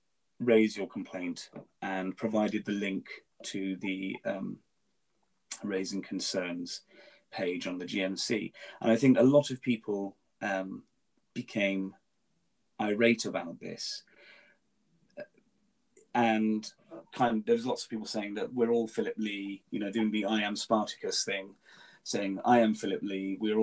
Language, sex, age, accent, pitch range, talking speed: English, male, 30-49, British, 100-125 Hz, 140 wpm